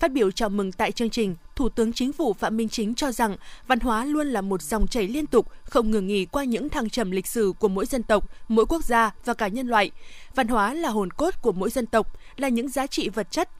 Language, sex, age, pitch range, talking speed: Vietnamese, female, 20-39, 215-275 Hz, 265 wpm